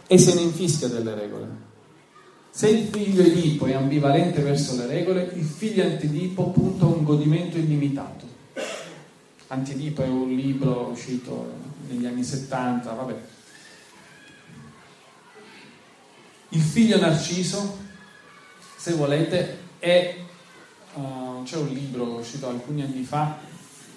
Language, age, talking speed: Italian, 40-59, 115 wpm